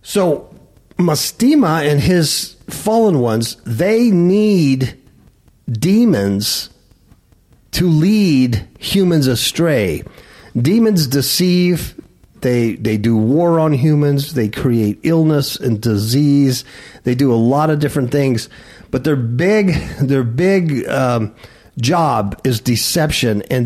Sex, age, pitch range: male, 50-69, 115-175 Hz